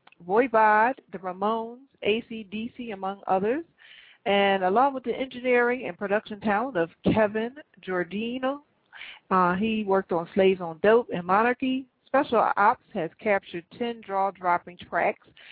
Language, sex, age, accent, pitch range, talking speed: English, female, 40-59, American, 180-220 Hz, 130 wpm